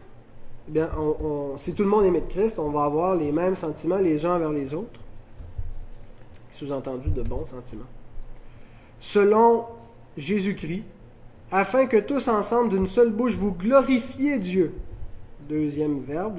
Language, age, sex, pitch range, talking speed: French, 20-39, male, 115-175 Hz, 145 wpm